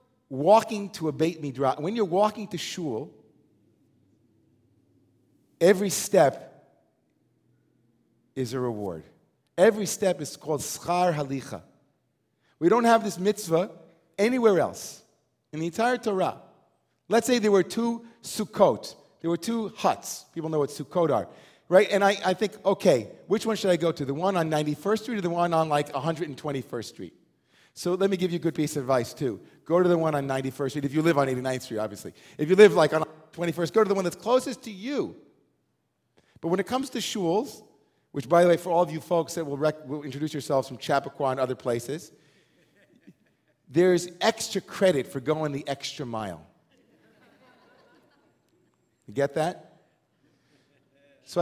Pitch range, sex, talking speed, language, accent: 140-195 Hz, male, 170 wpm, English, American